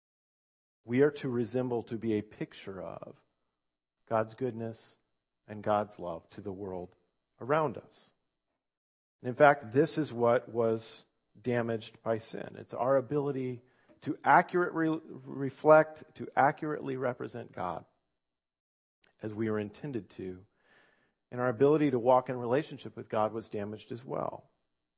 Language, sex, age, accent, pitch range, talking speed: English, male, 40-59, American, 105-135 Hz, 140 wpm